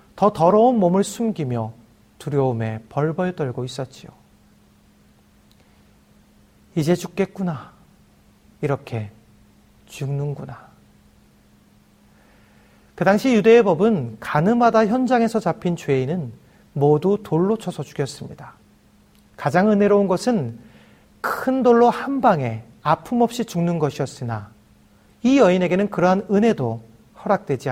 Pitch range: 130-210 Hz